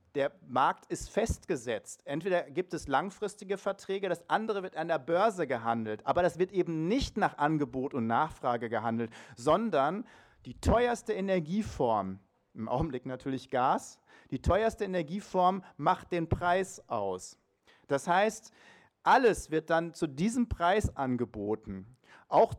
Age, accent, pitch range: 40-59, German, 125-190 Hz